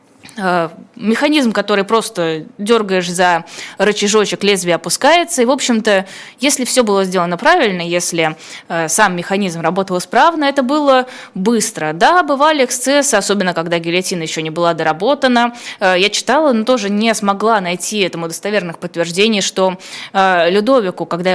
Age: 20-39